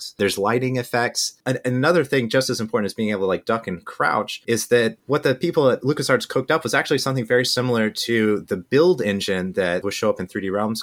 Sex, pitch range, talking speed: male, 105-135 Hz, 235 wpm